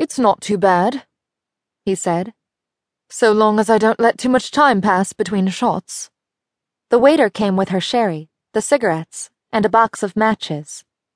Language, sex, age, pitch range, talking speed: English, female, 20-39, 185-250 Hz, 165 wpm